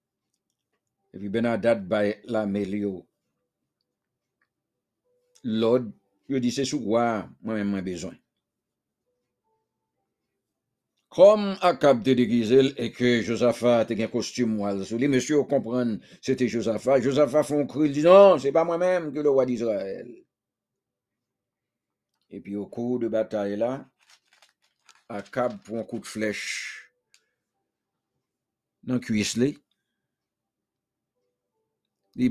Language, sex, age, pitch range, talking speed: English, male, 60-79, 105-150 Hz, 110 wpm